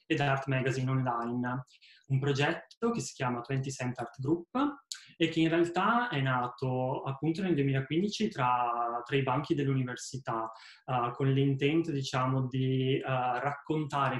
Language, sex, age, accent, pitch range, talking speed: Italian, male, 20-39, native, 130-160 Hz, 135 wpm